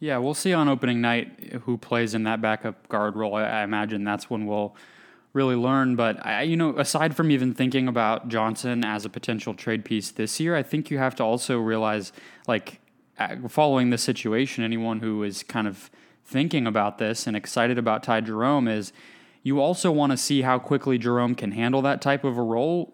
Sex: male